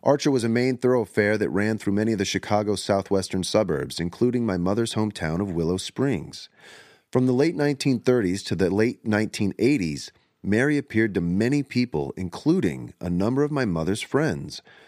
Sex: male